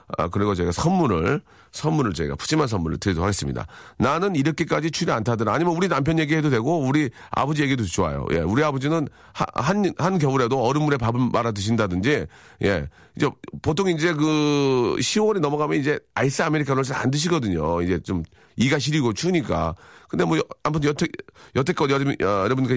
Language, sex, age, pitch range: Korean, male, 40-59, 105-160 Hz